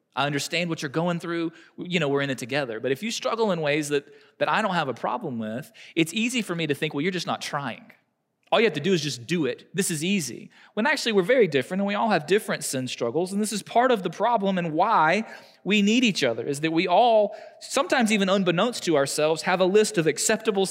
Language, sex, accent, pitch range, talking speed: English, male, American, 135-195 Hz, 255 wpm